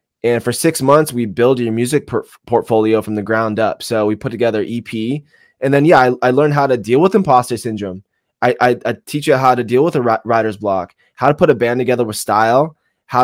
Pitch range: 115-135 Hz